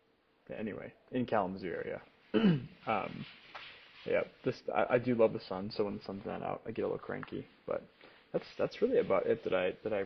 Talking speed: 205 wpm